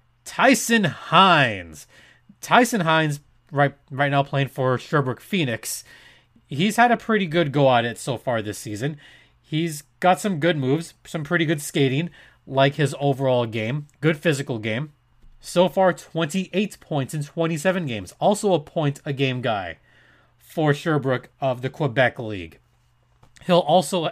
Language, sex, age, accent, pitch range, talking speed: English, male, 30-49, American, 130-180 Hz, 150 wpm